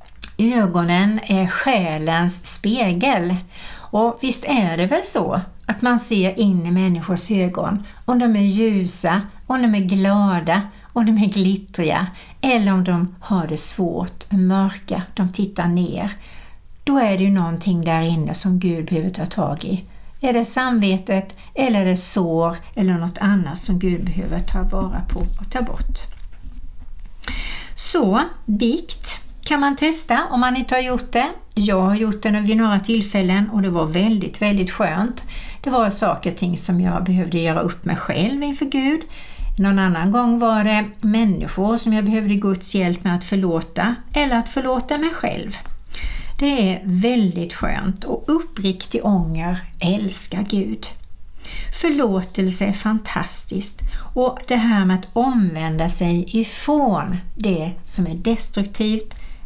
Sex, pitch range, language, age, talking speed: female, 180-225 Hz, Swedish, 60-79, 155 wpm